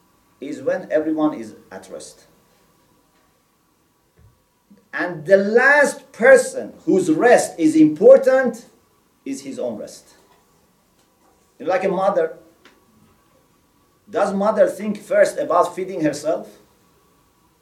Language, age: English, 50-69